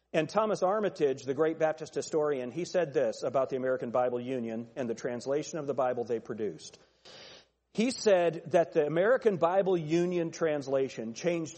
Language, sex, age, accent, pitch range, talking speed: English, male, 40-59, American, 140-190 Hz, 165 wpm